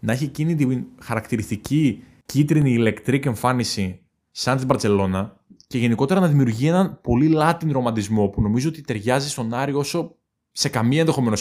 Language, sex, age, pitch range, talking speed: Greek, male, 20-39, 115-145 Hz, 155 wpm